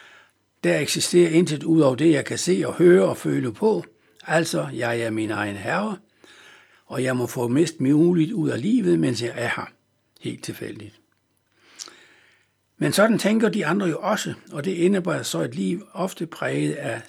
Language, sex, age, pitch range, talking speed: Danish, male, 60-79, 125-170 Hz, 180 wpm